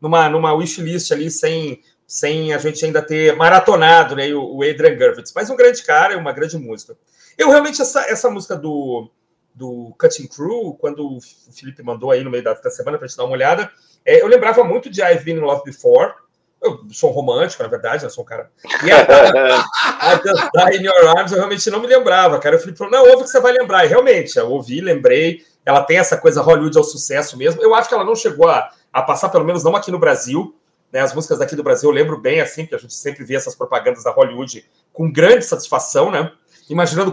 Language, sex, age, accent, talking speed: Portuguese, male, 40-59, Brazilian, 235 wpm